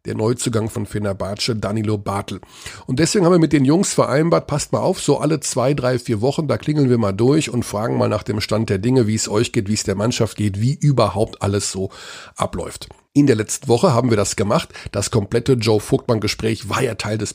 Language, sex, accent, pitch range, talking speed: German, male, German, 105-140 Hz, 230 wpm